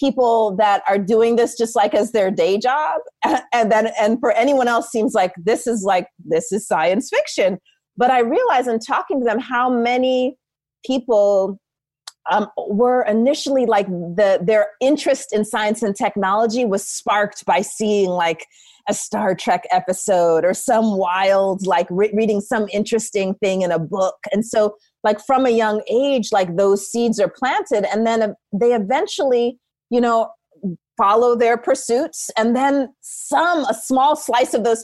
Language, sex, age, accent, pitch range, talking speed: English, female, 30-49, American, 195-240 Hz, 165 wpm